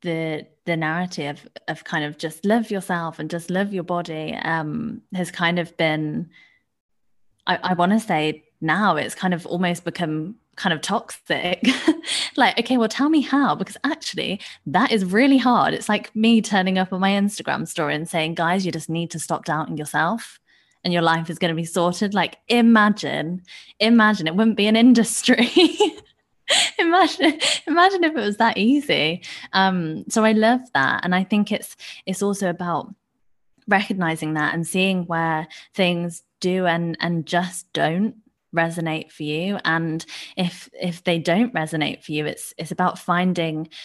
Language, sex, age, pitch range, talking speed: English, female, 20-39, 165-215 Hz, 170 wpm